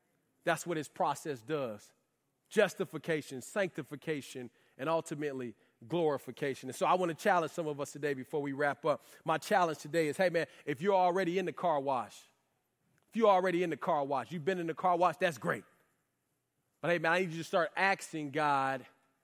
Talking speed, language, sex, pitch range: 195 wpm, English, male, 150-220 Hz